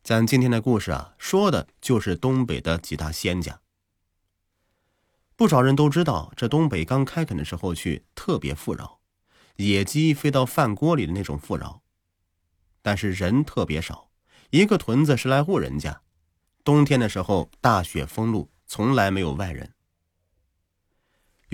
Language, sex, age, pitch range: Chinese, male, 30-49, 85-135 Hz